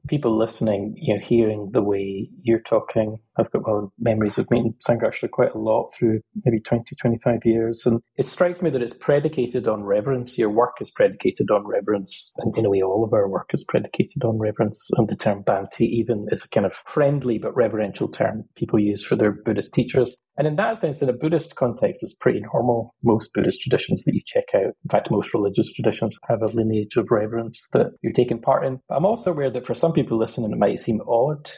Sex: male